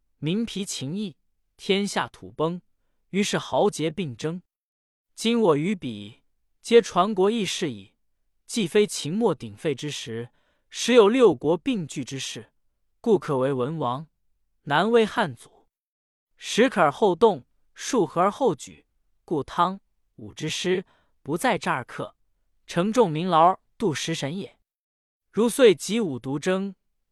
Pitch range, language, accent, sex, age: 120-200 Hz, Chinese, native, male, 20-39